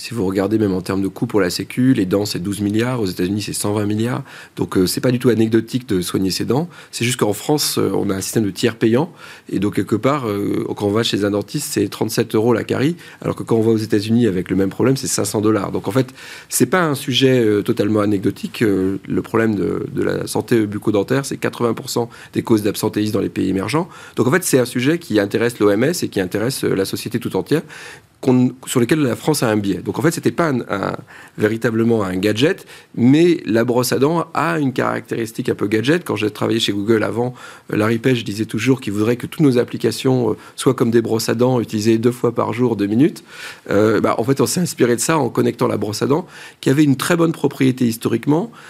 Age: 30-49